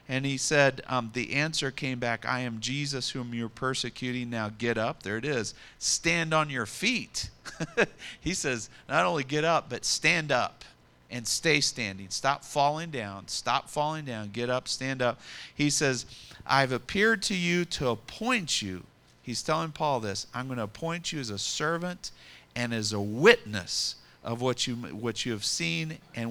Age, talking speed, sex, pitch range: 40-59, 180 wpm, male, 120-155 Hz